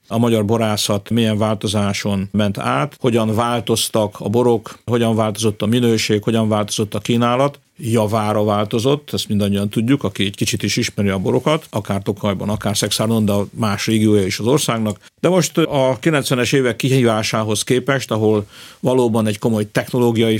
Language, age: Hungarian, 50-69